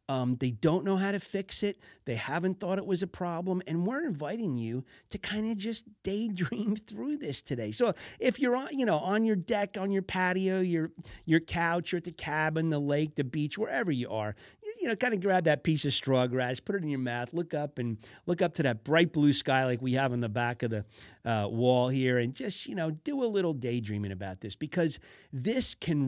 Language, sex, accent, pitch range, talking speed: English, male, American, 115-170 Hz, 235 wpm